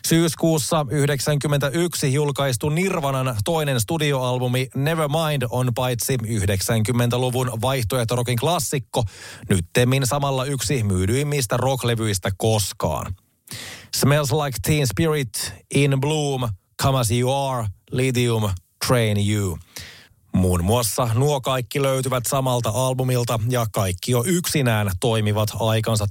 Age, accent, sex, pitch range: 30-49, native, male, 110-135 Hz